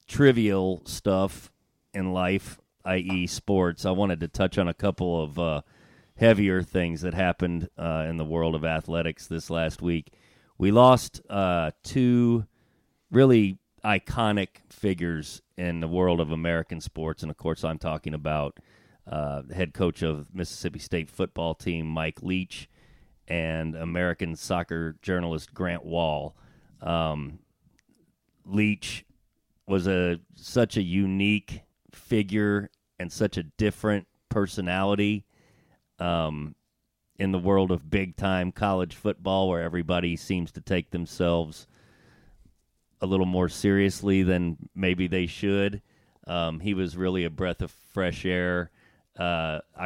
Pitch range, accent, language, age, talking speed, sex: 85-95 Hz, American, English, 30-49, 130 wpm, male